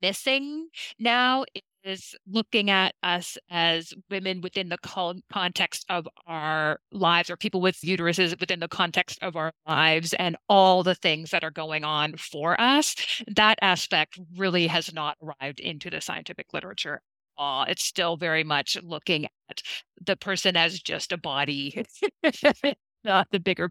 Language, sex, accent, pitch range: English, female, American, 165-210 Hz